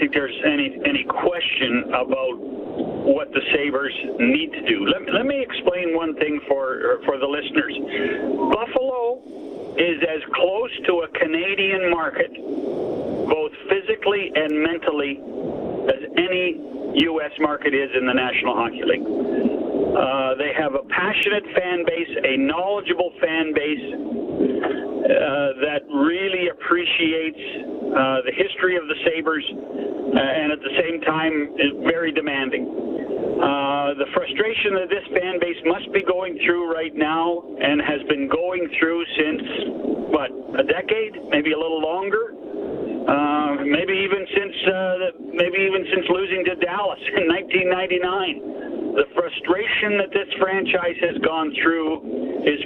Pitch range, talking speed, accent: 155-260 Hz, 140 wpm, American